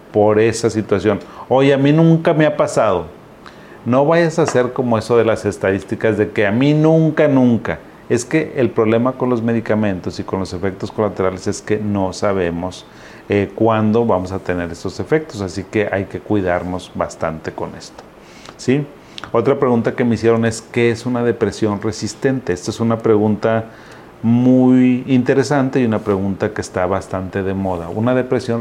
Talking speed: 175 wpm